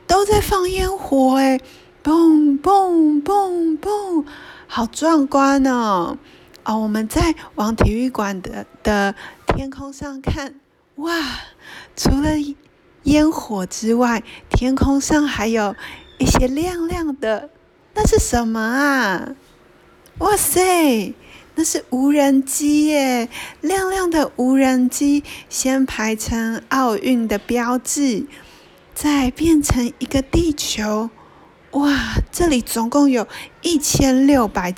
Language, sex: Chinese, female